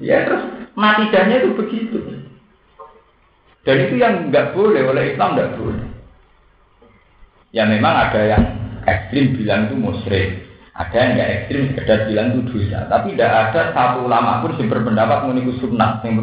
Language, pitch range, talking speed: Indonesian, 105-125 Hz, 165 wpm